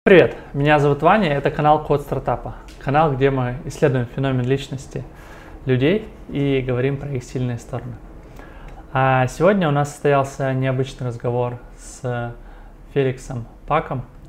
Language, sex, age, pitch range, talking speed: Russian, male, 20-39, 125-145 Hz, 130 wpm